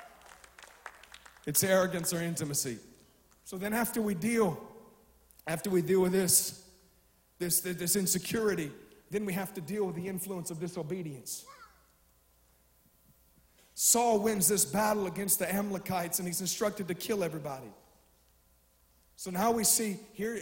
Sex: male